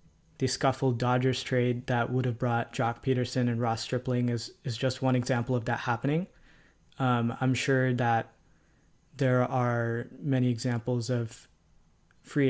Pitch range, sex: 120-130 Hz, male